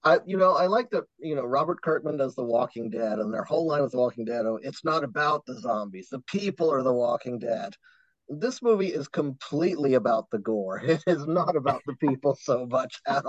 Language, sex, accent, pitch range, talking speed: English, male, American, 115-150 Hz, 220 wpm